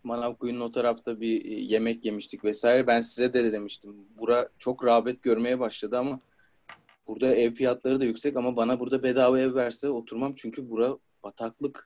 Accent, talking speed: native, 160 wpm